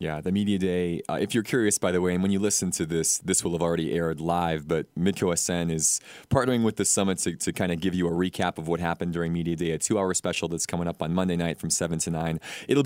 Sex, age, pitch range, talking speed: male, 20-39, 85-100 Hz, 270 wpm